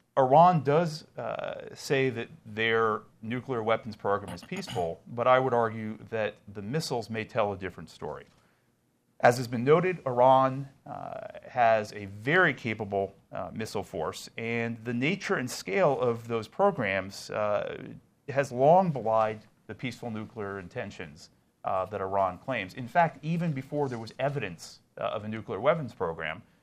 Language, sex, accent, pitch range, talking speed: English, male, American, 100-130 Hz, 155 wpm